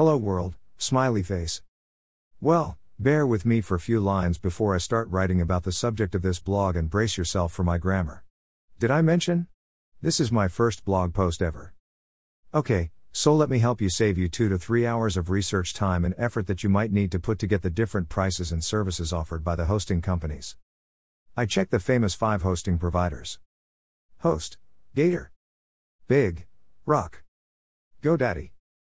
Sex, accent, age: male, American, 50-69